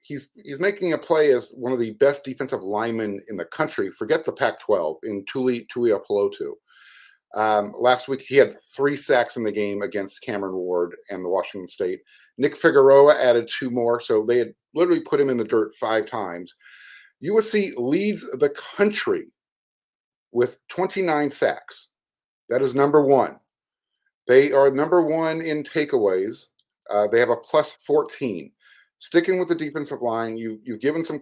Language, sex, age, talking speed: English, male, 50-69, 165 wpm